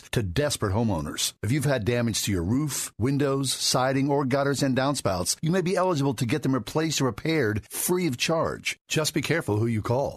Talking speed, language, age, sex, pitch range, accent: 205 wpm, English, 50-69, male, 110-145 Hz, American